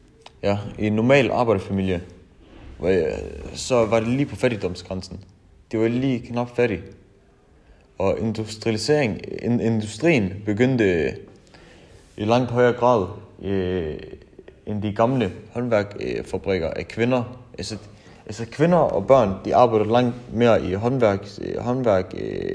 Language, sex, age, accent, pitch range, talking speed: Danish, male, 20-39, native, 95-115 Hz, 110 wpm